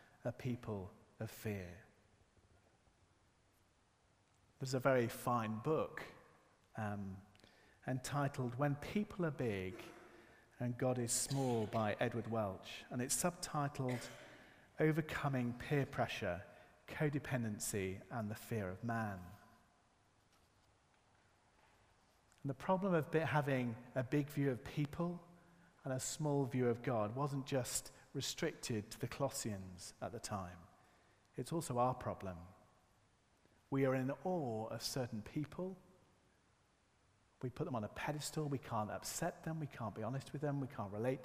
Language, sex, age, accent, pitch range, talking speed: English, male, 40-59, British, 105-140 Hz, 130 wpm